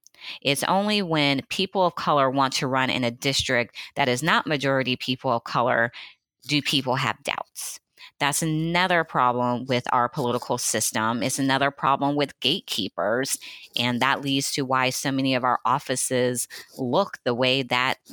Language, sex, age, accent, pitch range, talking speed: English, female, 30-49, American, 125-145 Hz, 160 wpm